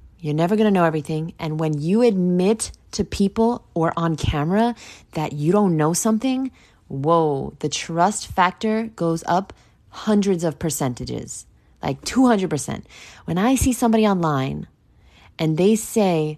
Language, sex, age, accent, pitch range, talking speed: English, female, 20-39, American, 145-195 Hz, 145 wpm